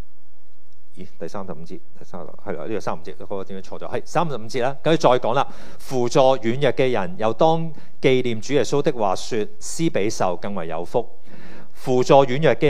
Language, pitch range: Chinese, 100-145 Hz